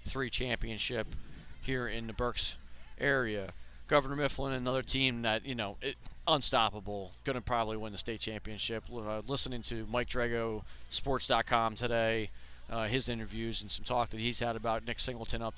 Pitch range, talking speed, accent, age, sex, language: 110-135 Hz, 160 wpm, American, 40-59, male, English